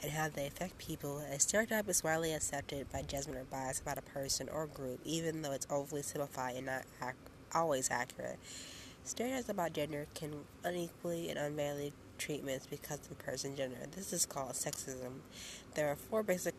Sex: female